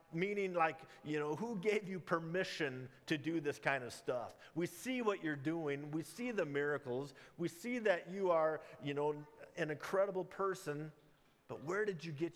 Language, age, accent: English, 50-69, American